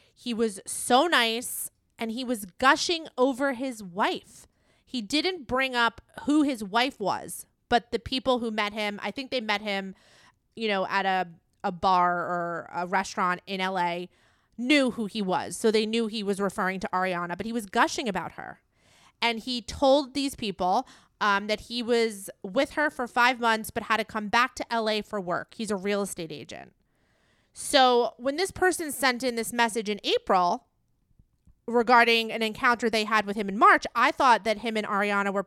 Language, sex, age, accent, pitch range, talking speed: English, female, 30-49, American, 200-250 Hz, 190 wpm